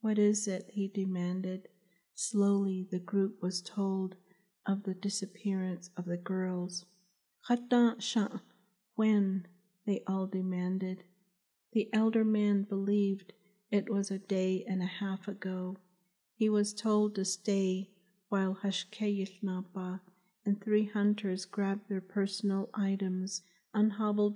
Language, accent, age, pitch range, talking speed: English, American, 50-69, 190-210 Hz, 115 wpm